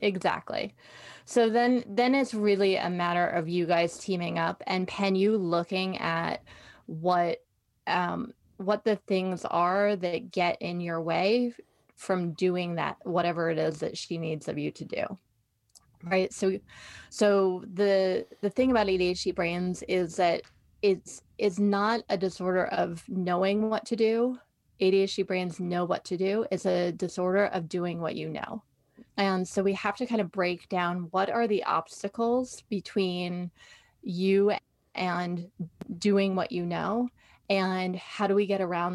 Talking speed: 160 wpm